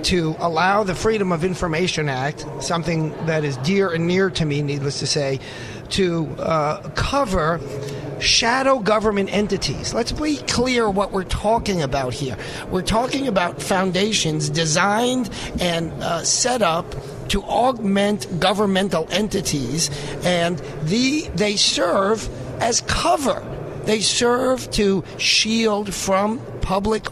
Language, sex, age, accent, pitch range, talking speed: English, male, 40-59, American, 155-215 Hz, 125 wpm